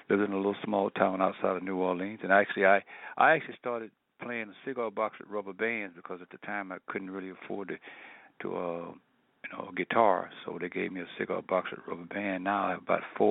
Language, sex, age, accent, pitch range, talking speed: English, male, 60-79, American, 95-110 Hz, 245 wpm